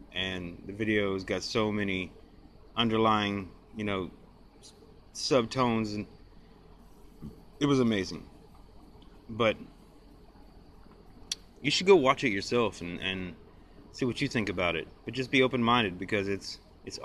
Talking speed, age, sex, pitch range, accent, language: 135 wpm, 30-49, male, 90-110 Hz, American, English